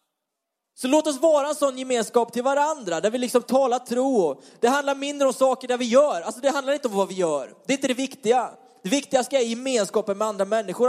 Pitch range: 225-275 Hz